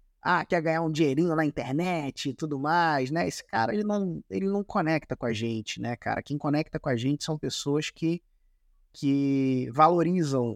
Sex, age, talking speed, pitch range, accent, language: male, 20-39, 180 wpm, 135-185 Hz, Brazilian, Portuguese